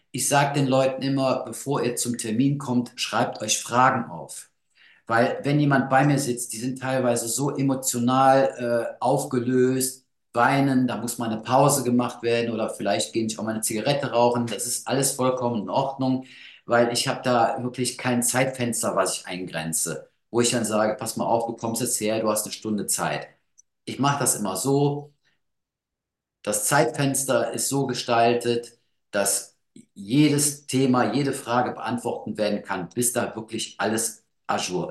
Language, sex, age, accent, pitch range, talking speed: German, male, 50-69, German, 115-140 Hz, 170 wpm